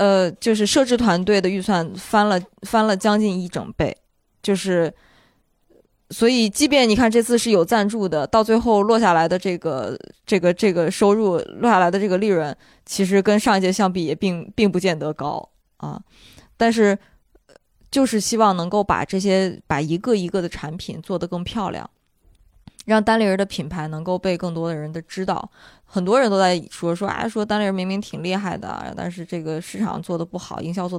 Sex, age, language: female, 20-39, Chinese